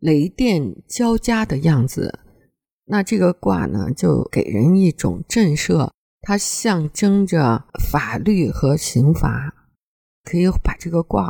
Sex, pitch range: female, 150-210 Hz